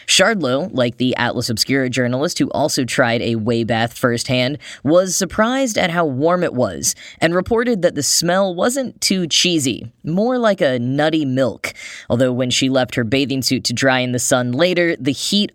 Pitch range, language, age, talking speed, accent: 125-165 Hz, English, 10-29, 185 wpm, American